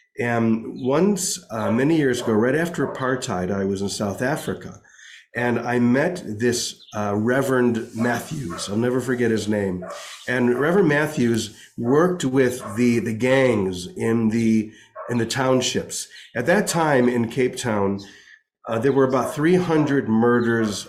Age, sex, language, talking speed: 40-59, male, English, 145 wpm